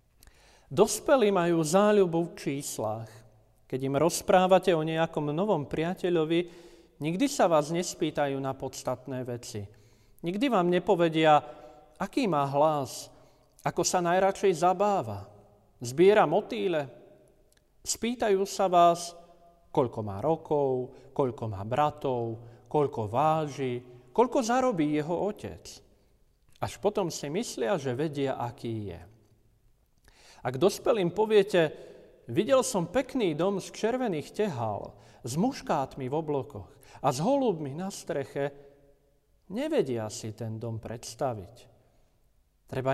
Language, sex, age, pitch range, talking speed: Slovak, male, 40-59, 130-185 Hz, 110 wpm